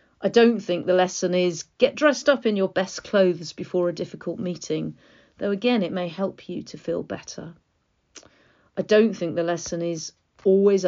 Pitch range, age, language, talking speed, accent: 165-195 Hz, 40-59, English, 180 wpm, British